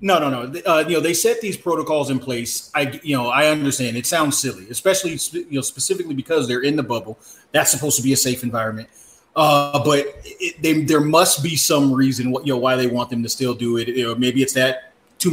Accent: American